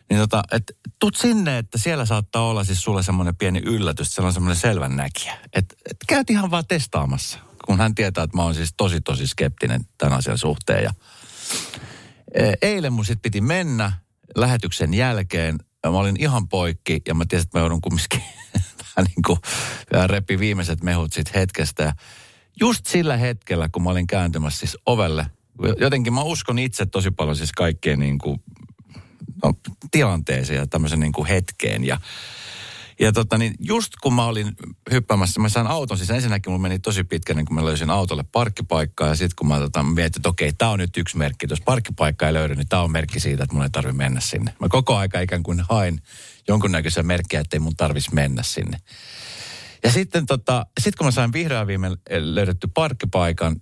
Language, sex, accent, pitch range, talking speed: Finnish, male, native, 80-115 Hz, 185 wpm